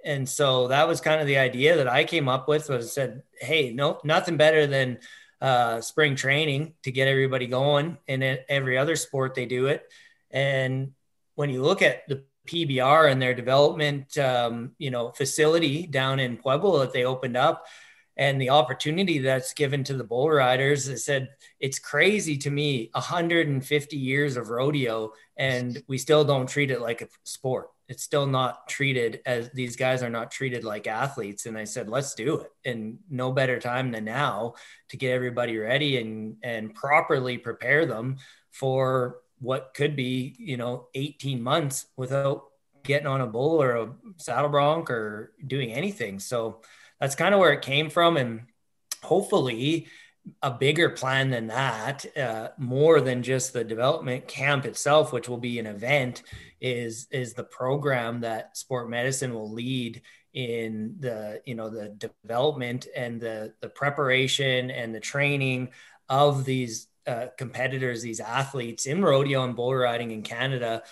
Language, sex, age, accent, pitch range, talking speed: English, male, 20-39, American, 120-145 Hz, 170 wpm